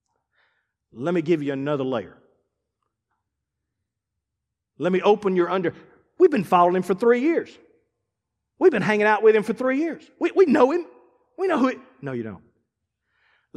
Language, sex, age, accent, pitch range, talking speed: English, male, 40-59, American, 175-250 Hz, 170 wpm